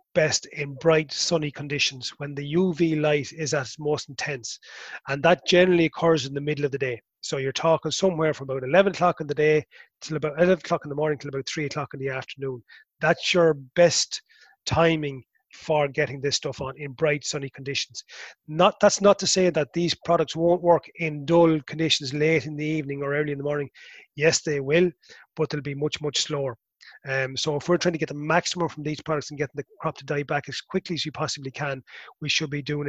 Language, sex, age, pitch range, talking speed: English, male, 30-49, 140-165 Hz, 225 wpm